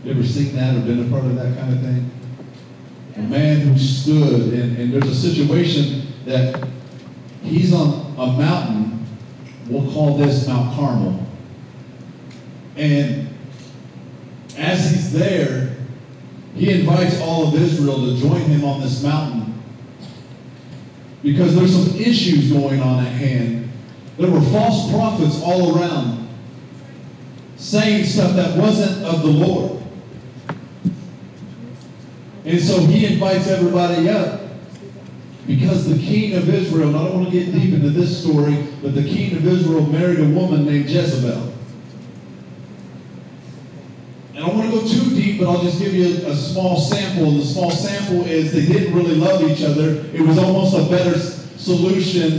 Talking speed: 150 wpm